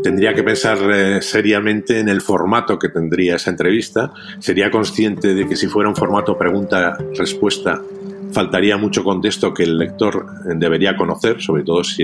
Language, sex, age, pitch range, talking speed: Spanish, male, 50-69, 85-115 Hz, 160 wpm